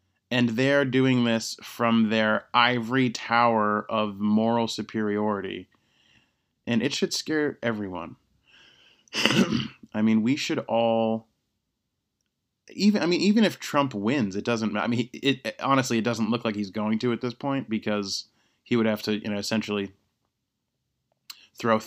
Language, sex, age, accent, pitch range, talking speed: English, male, 30-49, American, 105-120 Hz, 150 wpm